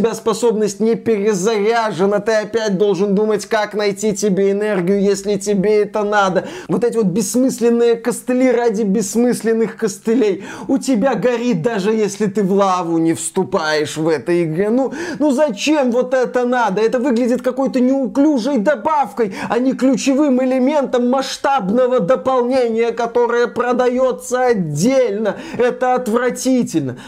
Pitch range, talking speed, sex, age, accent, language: 195-240 Hz, 130 wpm, male, 20-39, native, Russian